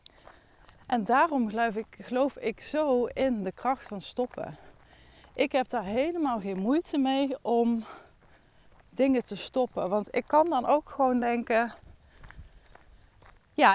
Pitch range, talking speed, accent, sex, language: 210-260 Hz, 135 wpm, Dutch, female, Dutch